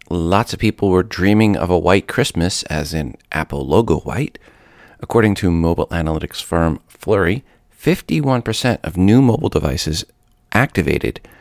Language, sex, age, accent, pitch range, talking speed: English, male, 40-59, American, 85-105 Hz, 135 wpm